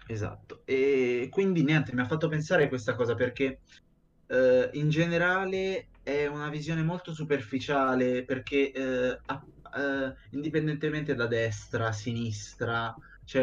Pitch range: 120-145 Hz